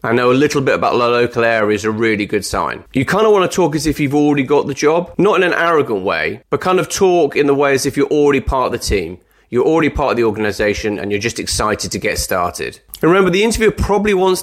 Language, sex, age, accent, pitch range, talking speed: English, male, 30-49, British, 110-155 Hz, 270 wpm